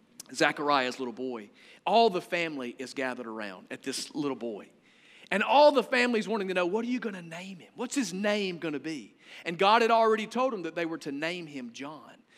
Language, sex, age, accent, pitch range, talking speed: English, male, 40-59, American, 160-230 Hz, 225 wpm